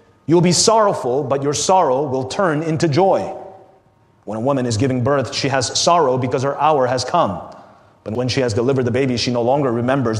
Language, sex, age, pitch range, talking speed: English, male, 30-49, 115-150 Hz, 210 wpm